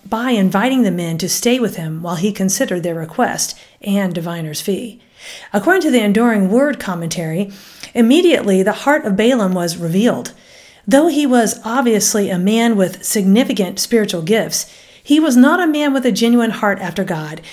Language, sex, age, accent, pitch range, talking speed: English, female, 40-59, American, 195-255 Hz, 170 wpm